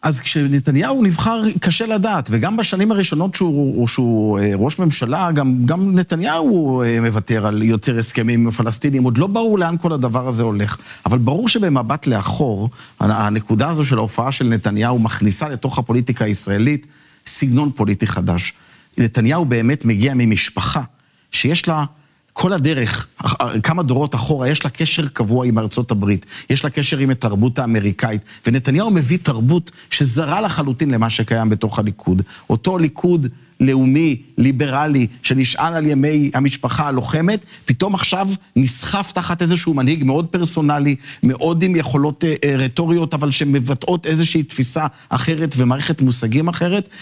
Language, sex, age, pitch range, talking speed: Hebrew, male, 50-69, 120-160 Hz, 135 wpm